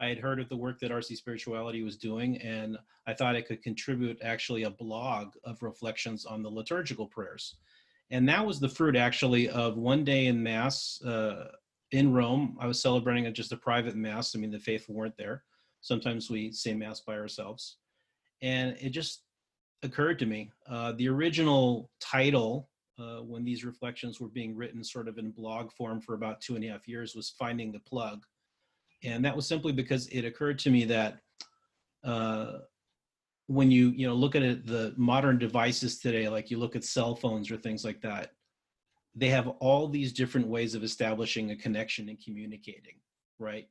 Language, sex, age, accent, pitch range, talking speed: English, male, 30-49, American, 110-130 Hz, 190 wpm